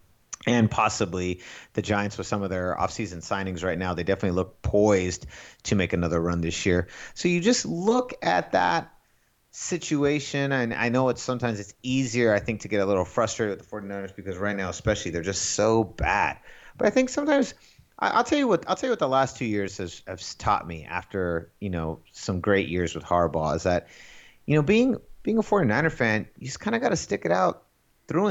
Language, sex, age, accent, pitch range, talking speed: English, male, 30-49, American, 95-140 Hz, 215 wpm